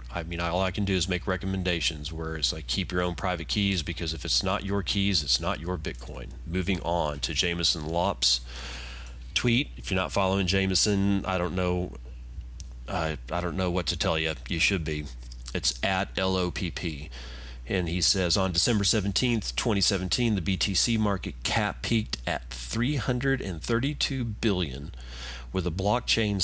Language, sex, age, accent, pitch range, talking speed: English, male, 40-59, American, 75-95 Hz, 165 wpm